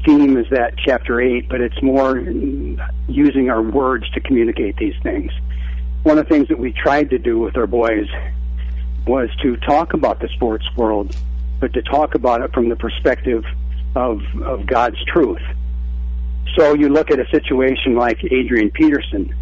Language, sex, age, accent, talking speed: English, male, 60-79, American, 170 wpm